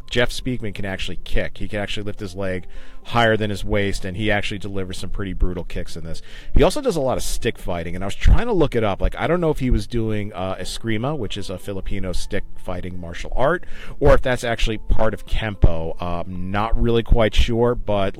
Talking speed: 235 wpm